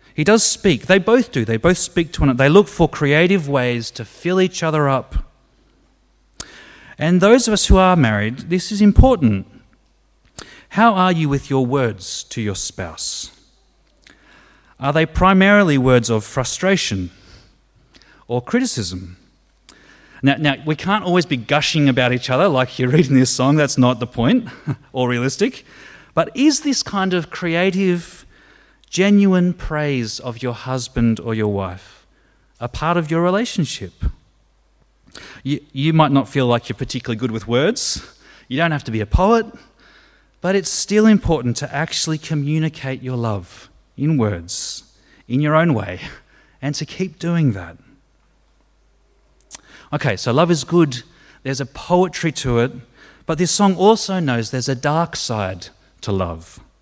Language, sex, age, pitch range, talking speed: English, male, 30-49, 120-175 Hz, 155 wpm